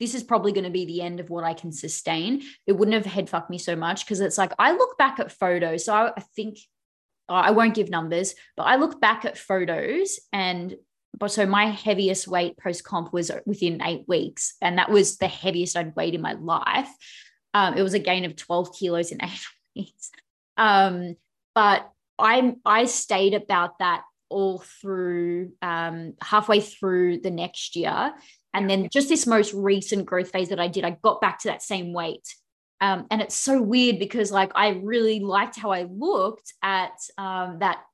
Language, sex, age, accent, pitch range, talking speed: English, female, 20-39, Australian, 180-220 Hz, 195 wpm